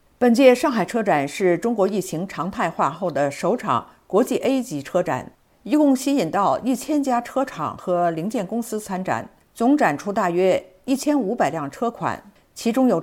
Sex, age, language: female, 50-69, Chinese